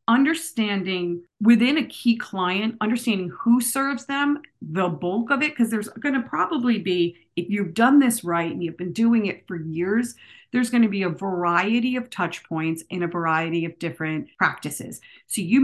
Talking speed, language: 185 wpm, English